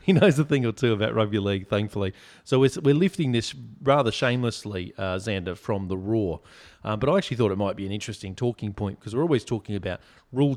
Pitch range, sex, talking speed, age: 100-125 Hz, male, 220 wpm, 30-49